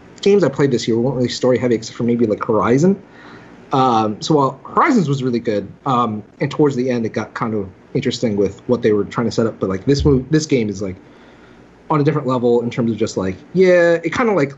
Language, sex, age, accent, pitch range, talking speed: English, male, 30-49, American, 115-170 Hz, 250 wpm